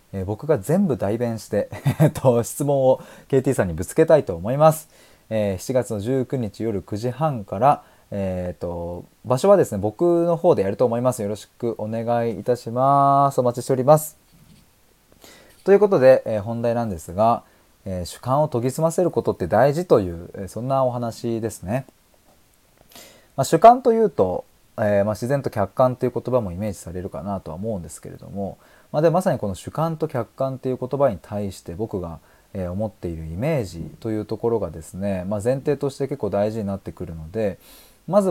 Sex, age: male, 20-39